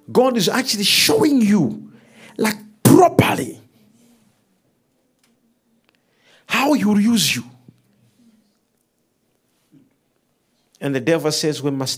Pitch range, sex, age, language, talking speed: 145-230 Hz, male, 50-69, English, 90 wpm